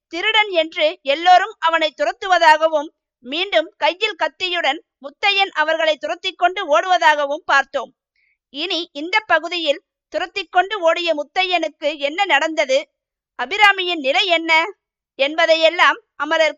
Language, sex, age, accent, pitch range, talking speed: Tamil, female, 50-69, native, 285-350 Hz, 95 wpm